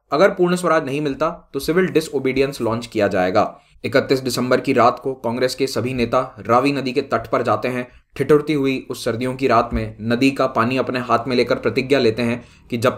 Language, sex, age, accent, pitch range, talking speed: Hindi, male, 20-39, native, 120-150 Hz, 215 wpm